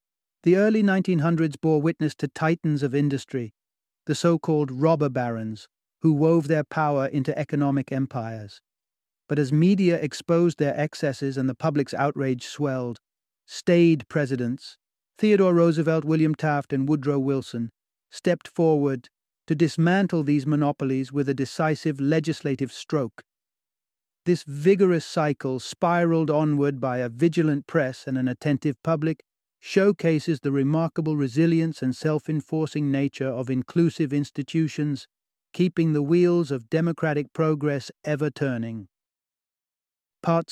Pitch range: 135-160 Hz